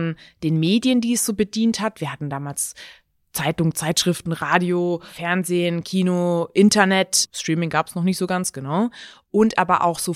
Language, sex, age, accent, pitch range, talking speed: English, female, 20-39, German, 170-210 Hz, 165 wpm